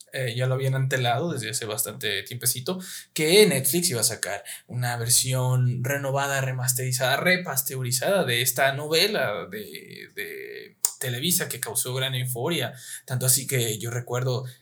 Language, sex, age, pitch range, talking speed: Spanish, male, 20-39, 125-160 Hz, 140 wpm